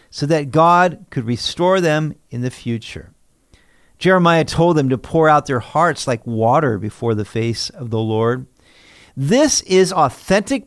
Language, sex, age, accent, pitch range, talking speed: English, male, 50-69, American, 120-185 Hz, 155 wpm